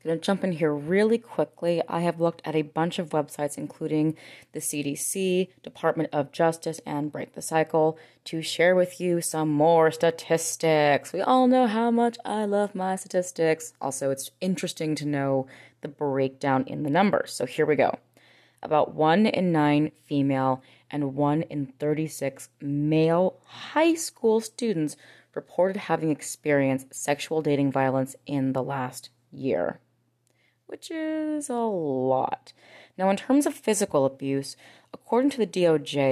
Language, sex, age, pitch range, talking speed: English, female, 20-39, 145-185 Hz, 155 wpm